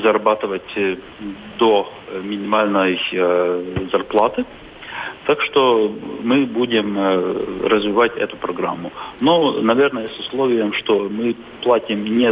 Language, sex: Russian, male